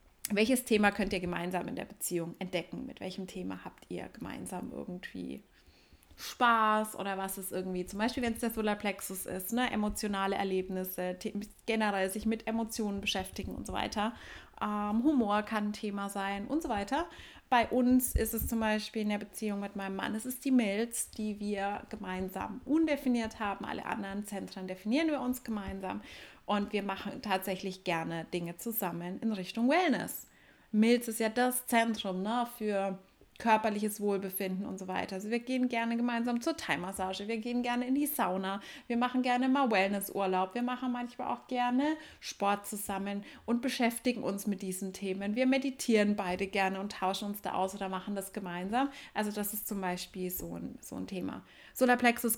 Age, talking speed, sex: 30-49, 175 wpm, female